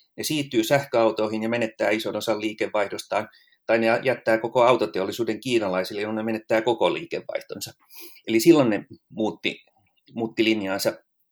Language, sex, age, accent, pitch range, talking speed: Finnish, male, 30-49, native, 110-145 Hz, 135 wpm